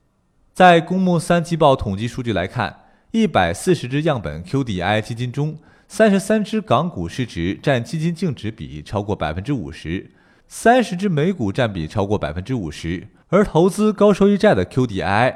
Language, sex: Chinese, male